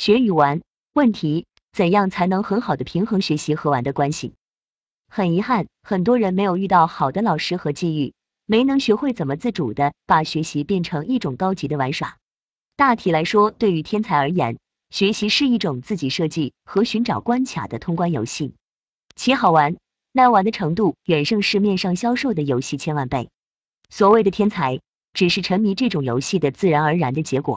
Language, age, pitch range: Chinese, 30-49, 150-215 Hz